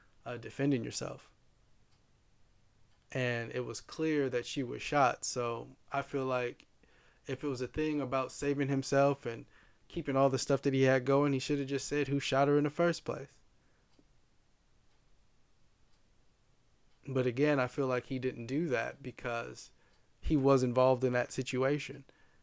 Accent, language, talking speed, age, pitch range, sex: American, English, 160 wpm, 20-39, 120-140 Hz, male